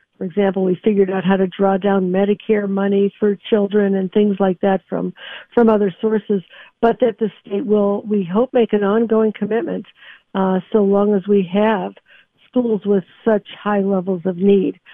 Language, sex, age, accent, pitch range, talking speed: English, female, 60-79, American, 200-235 Hz, 180 wpm